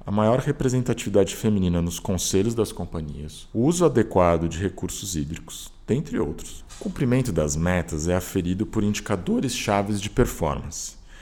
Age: 40-59